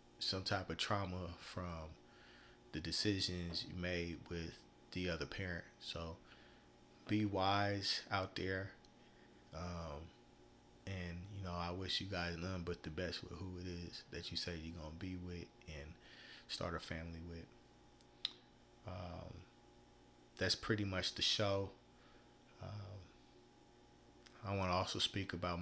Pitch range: 85-95 Hz